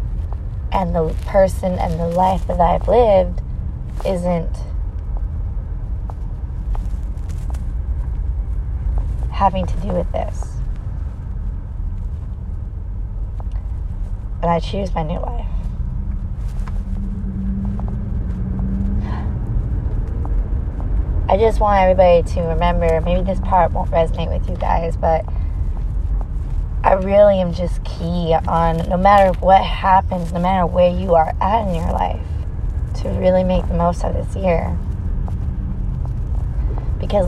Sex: female